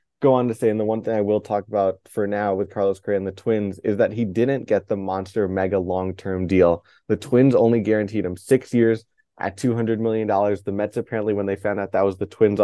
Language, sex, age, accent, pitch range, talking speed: English, male, 20-39, American, 95-110 Hz, 240 wpm